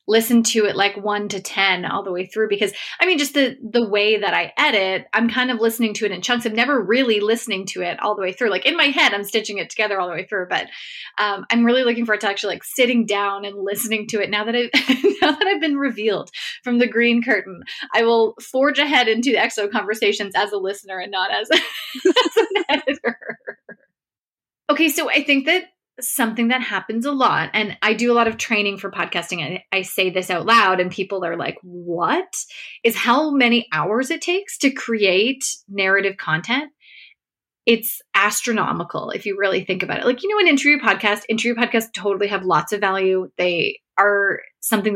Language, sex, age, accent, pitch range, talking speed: English, female, 20-39, American, 195-245 Hz, 215 wpm